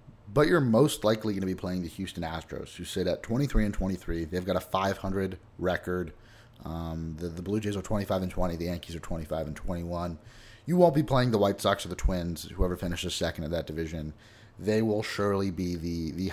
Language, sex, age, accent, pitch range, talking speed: English, male, 30-49, American, 90-110 Hz, 215 wpm